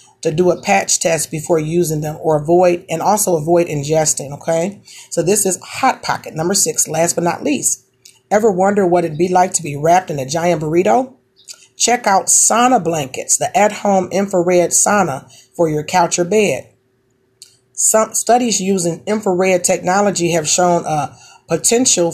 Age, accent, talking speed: 40-59, American, 165 wpm